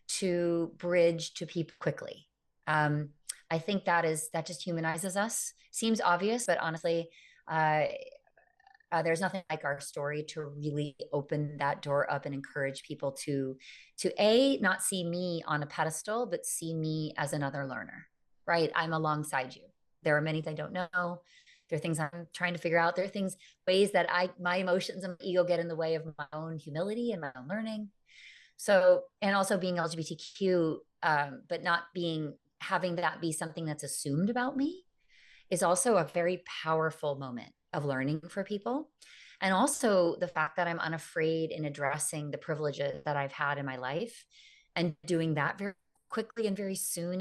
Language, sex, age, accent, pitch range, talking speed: English, female, 30-49, American, 150-190 Hz, 180 wpm